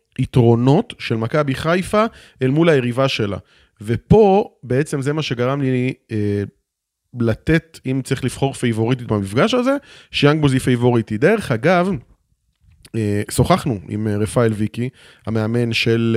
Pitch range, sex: 110-135 Hz, male